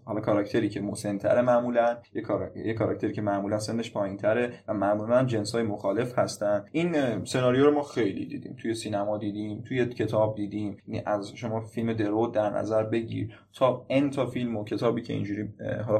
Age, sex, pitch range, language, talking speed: 20-39, male, 105-125 Hz, Persian, 175 wpm